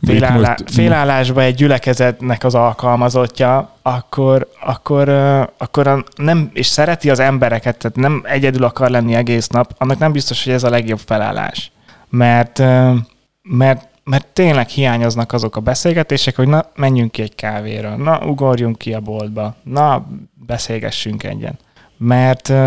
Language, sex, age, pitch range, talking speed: Hungarian, male, 20-39, 115-135 Hz, 135 wpm